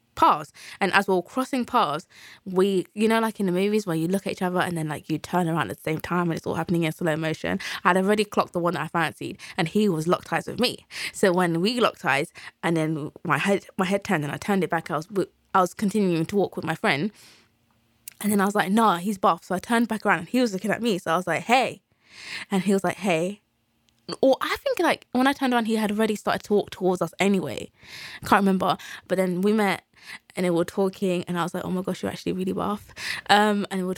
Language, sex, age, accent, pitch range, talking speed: English, female, 20-39, British, 170-205 Hz, 265 wpm